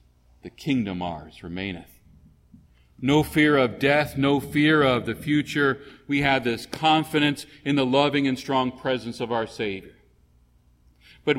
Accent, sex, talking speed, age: American, male, 140 wpm, 40-59